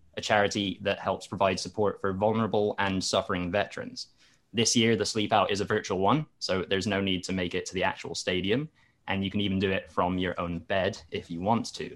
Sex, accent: male, British